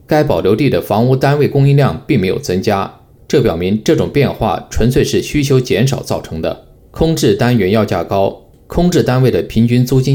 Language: Chinese